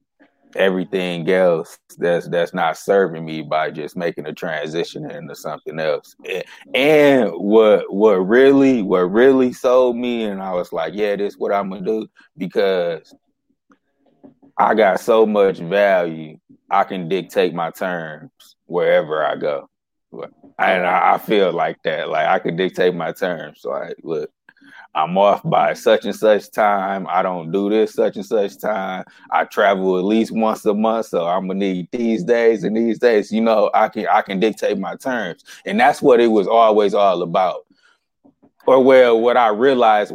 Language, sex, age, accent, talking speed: English, male, 20-39, American, 175 wpm